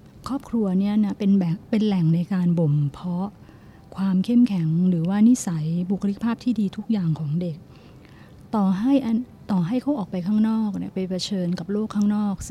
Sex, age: female, 30-49